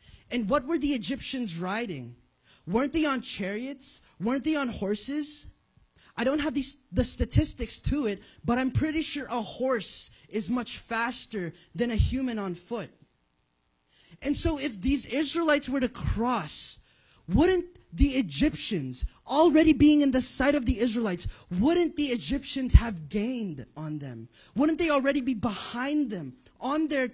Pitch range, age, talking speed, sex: 190-285 Hz, 20-39, 155 wpm, male